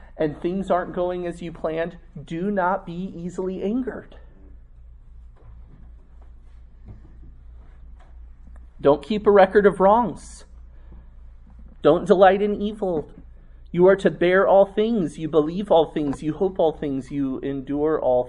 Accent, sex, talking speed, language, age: American, male, 130 wpm, English, 40-59